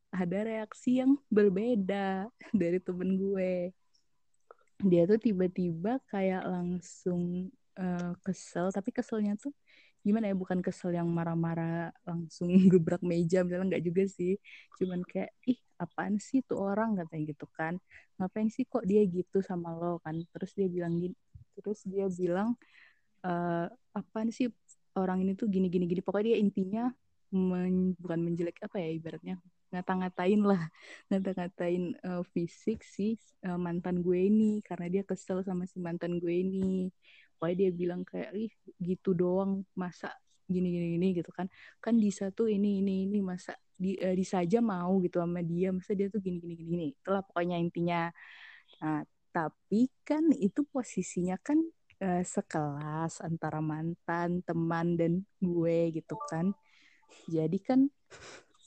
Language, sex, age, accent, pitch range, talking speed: Indonesian, female, 20-39, native, 175-205 Hz, 140 wpm